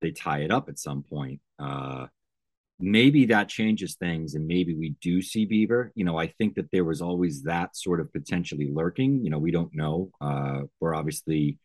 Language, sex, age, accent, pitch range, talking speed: English, male, 30-49, American, 80-105 Hz, 200 wpm